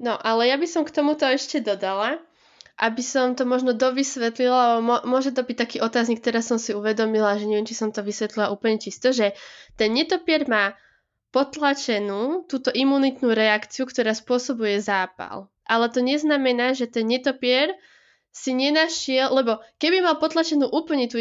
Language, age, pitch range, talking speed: Slovak, 20-39, 225-275 Hz, 160 wpm